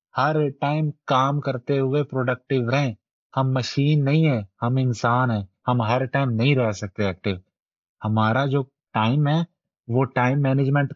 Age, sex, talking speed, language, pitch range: 30-49, male, 155 wpm, Urdu, 120-150 Hz